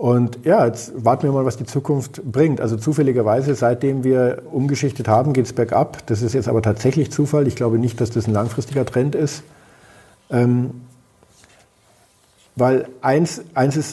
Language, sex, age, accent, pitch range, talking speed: German, male, 50-69, German, 110-135 Hz, 165 wpm